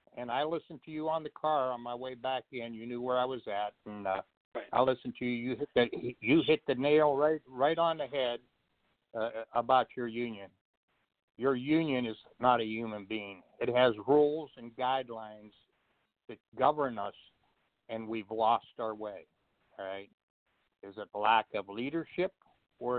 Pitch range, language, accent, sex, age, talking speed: 115-135 Hz, English, American, male, 60-79, 180 wpm